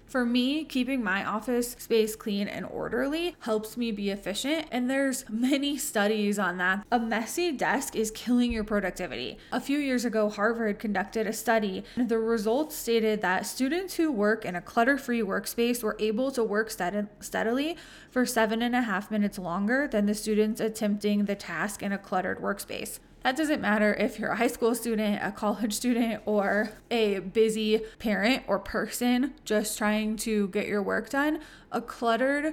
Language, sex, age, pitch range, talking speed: English, female, 20-39, 205-245 Hz, 175 wpm